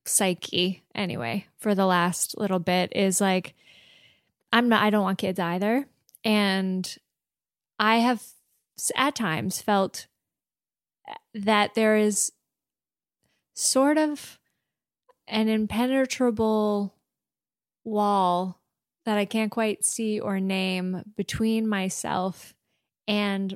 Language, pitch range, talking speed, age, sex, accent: English, 185-220 Hz, 100 wpm, 20-39, female, American